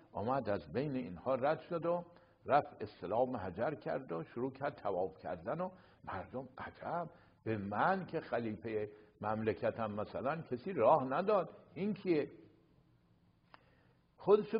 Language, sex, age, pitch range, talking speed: English, male, 60-79, 110-165 Hz, 125 wpm